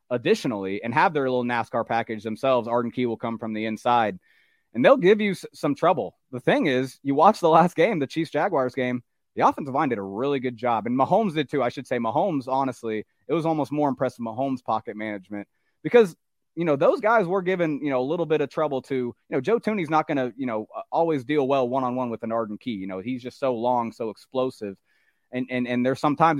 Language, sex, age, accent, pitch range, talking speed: English, male, 30-49, American, 115-150 Hz, 230 wpm